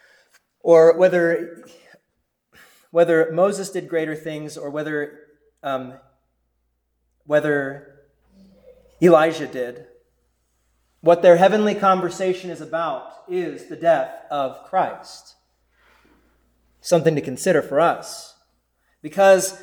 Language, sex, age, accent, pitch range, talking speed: English, male, 30-49, American, 145-195 Hz, 90 wpm